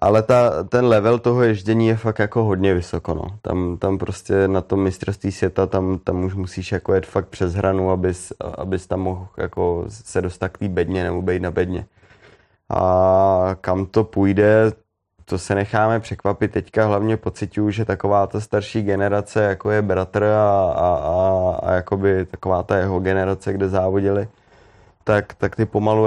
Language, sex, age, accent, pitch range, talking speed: Czech, male, 20-39, native, 95-105 Hz, 160 wpm